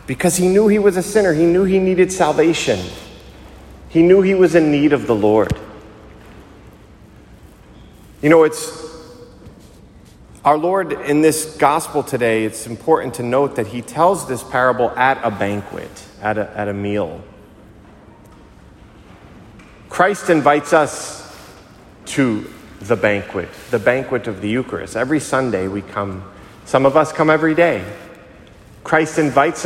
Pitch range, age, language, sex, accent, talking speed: 110-155 Hz, 30-49, English, male, American, 140 wpm